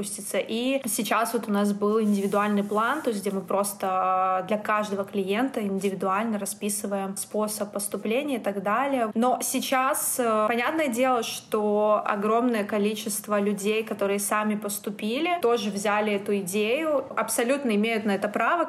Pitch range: 205-235 Hz